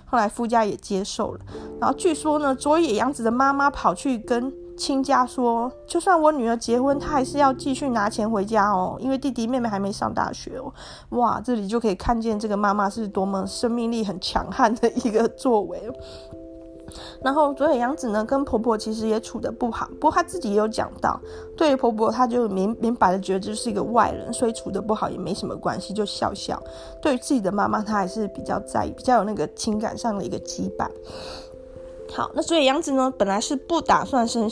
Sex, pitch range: female, 215-275 Hz